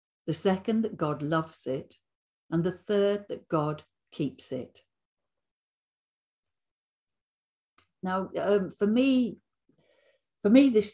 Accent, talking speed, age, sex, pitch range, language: British, 110 wpm, 50-69, female, 140-195 Hz, English